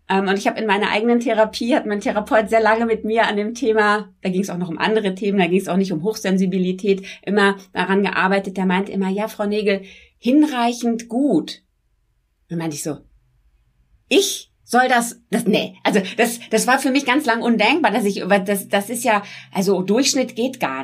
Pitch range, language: 190-235 Hz, German